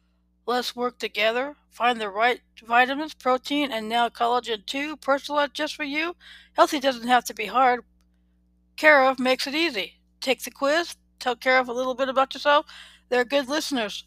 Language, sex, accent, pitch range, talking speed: English, female, American, 235-270 Hz, 165 wpm